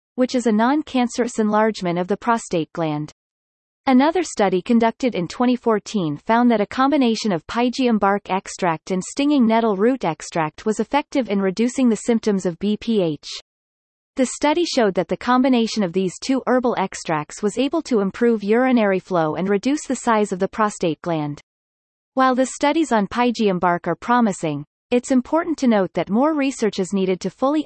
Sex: female